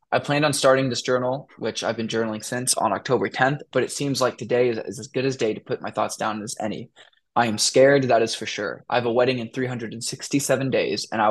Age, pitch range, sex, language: 10-29, 115-135 Hz, male, English